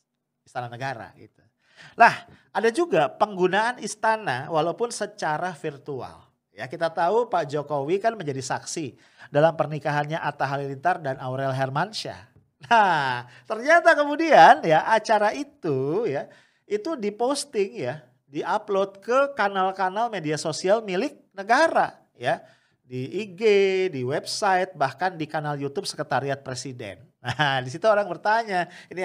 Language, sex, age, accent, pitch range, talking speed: English, male, 40-59, Indonesian, 135-205 Hz, 125 wpm